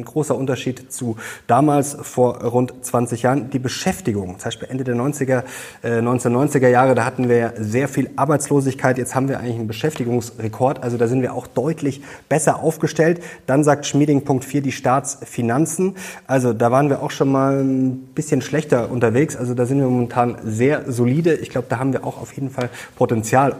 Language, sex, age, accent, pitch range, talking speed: German, male, 30-49, German, 125-145 Hz, 190 wpm